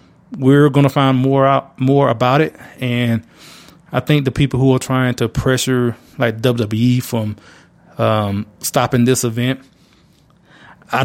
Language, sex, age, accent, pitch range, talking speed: English, male, 20-39, American, 120-145 Hz, 145 wpm